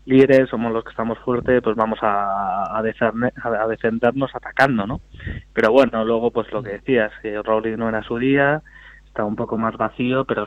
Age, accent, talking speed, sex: 20-39, Spanish, 190 wpm, male